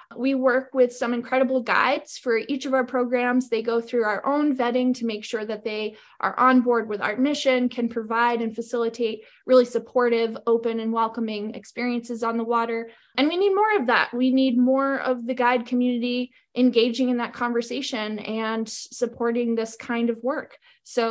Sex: female